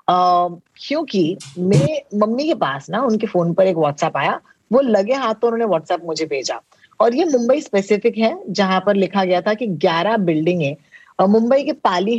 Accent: native